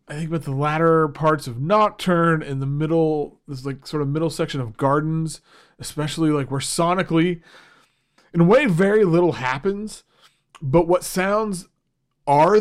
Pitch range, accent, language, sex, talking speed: 140-180 Hz, American, English, male, 155 wpm